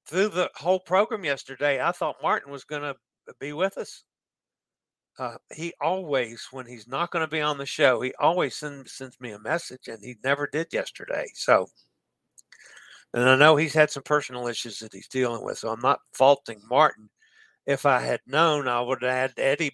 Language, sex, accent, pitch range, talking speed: English, male, American, 125-150 Hz, 200 wpm